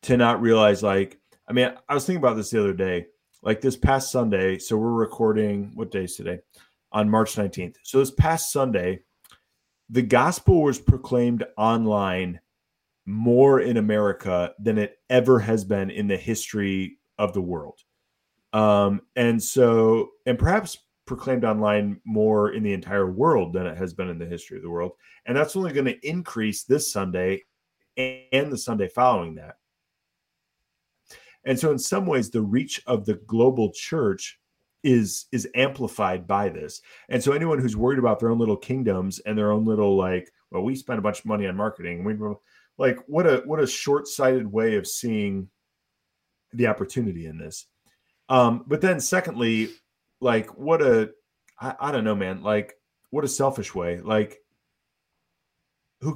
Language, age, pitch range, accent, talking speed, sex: English, 30-49, 100-130 Hz, American, 170 wpm, male